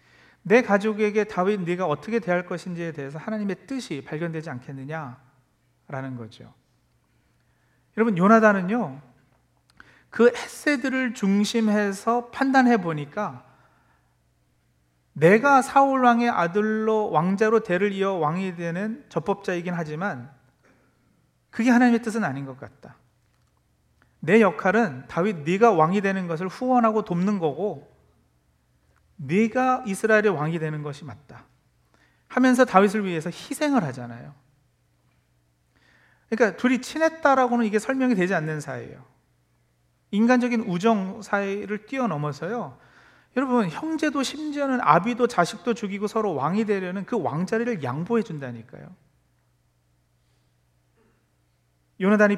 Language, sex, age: Korean, male, 40-59